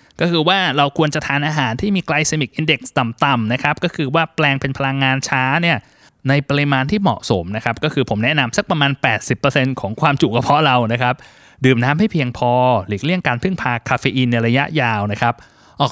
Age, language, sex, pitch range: 20-39, Thai, male, 120-155 Hz